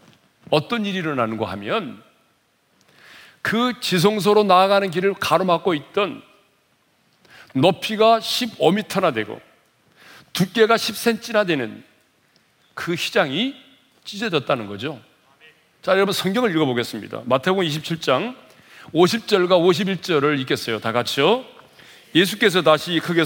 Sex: male